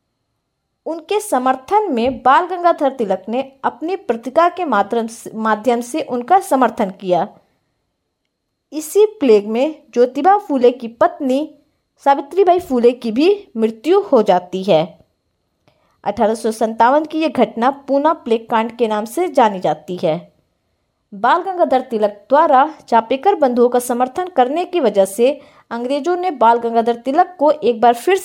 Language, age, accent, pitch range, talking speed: Hindi, 20-39, native, 220-315 Hz, 140 wpm